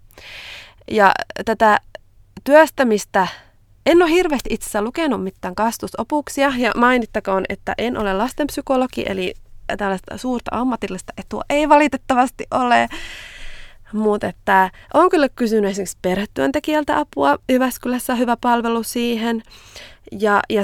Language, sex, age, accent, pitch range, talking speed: Finnish, female, 20-39, native, 185-255 Hz, 110 wpm